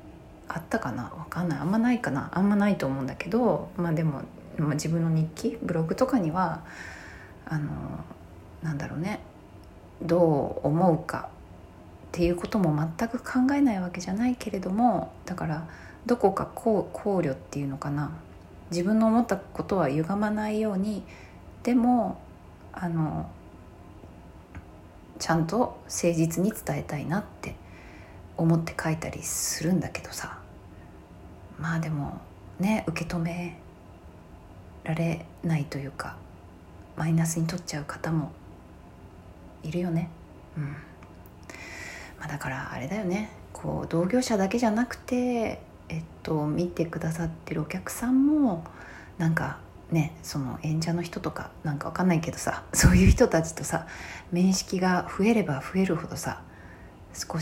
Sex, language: female, Japanese